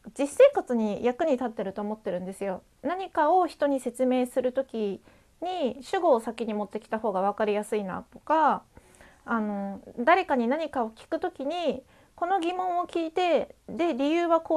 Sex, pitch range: female, 220-335 Hz